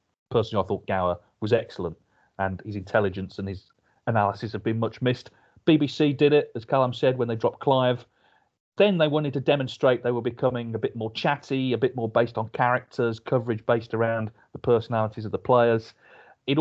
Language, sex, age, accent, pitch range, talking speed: English, male, 40-59, British, 110-140 Hz, 190 wpm